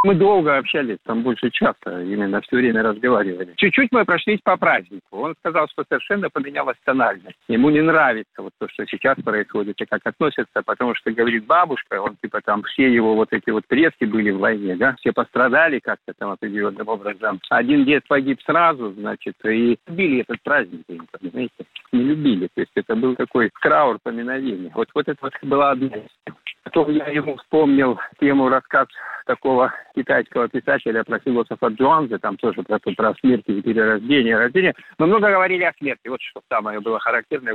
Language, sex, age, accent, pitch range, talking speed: Russian, male, 50-69, native, 110-155 Hz, 175 wpm